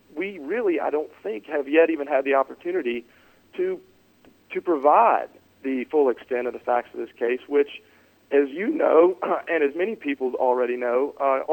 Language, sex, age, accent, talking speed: English, male, 40-59, American, 175 wpm